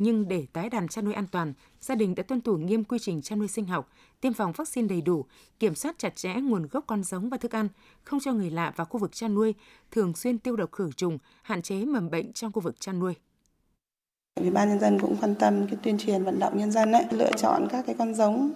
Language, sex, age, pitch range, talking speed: Vietnamese, female, 20-39, 190-235 Hz, 260 wpm